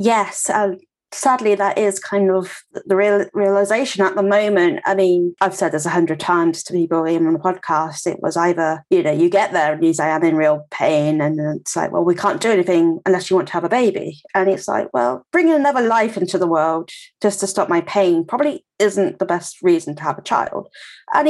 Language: English